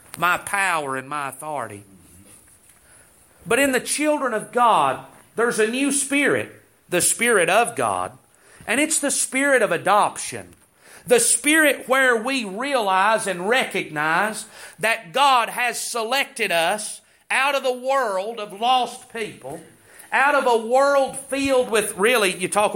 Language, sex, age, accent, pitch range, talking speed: English, male, 40-59, American, 200-275 Hz, 140 wpm